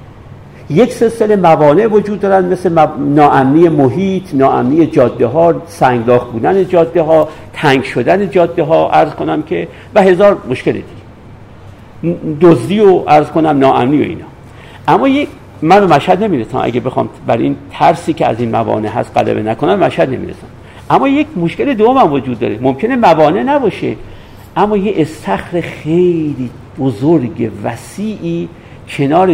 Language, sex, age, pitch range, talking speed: Persian, male, 50-69, 135-210 Hz, 140 wpm